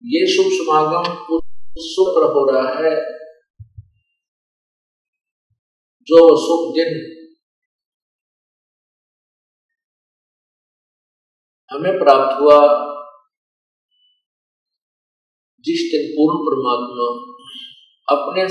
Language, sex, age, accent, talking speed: Hindi, male, 50-69, native, 50 wpm